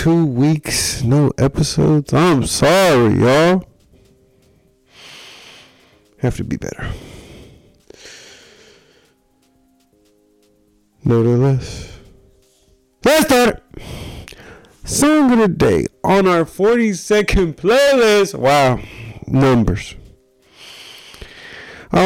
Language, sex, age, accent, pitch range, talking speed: English, male, 30-49, American, 105-140 Hz, 70 wpm